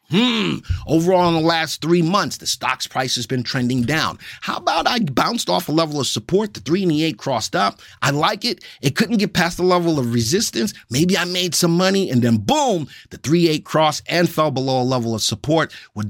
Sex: male